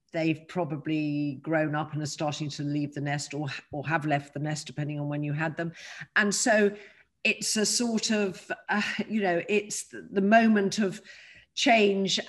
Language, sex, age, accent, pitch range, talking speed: English, female, 50-69, British, 160-210 Hz, 180 wpm